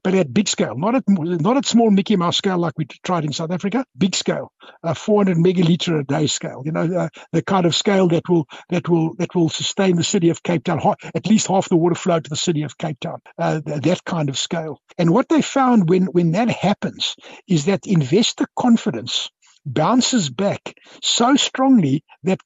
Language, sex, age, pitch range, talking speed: English, male, 60-79, 155-195 Hz, 215 wpm